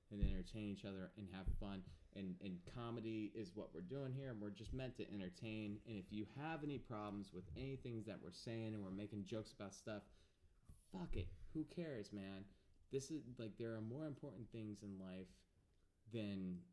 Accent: American